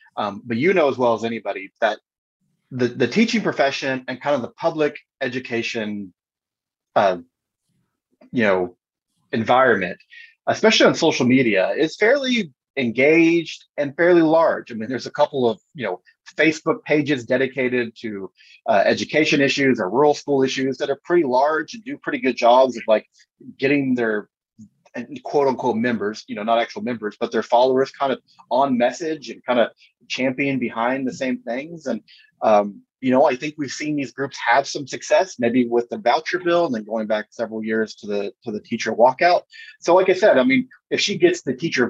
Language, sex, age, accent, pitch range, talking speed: English, male, 30-49, American, 115-155 Hz, 185 wpm